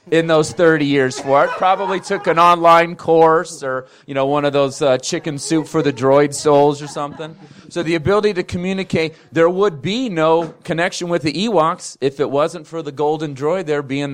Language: English